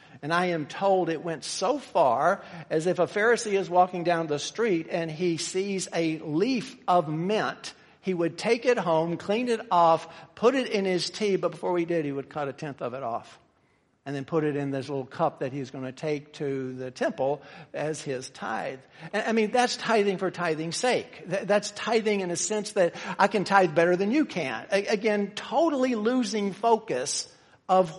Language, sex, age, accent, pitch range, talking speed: English, male, 50-69, American, 165-215 Hz, 200 wpm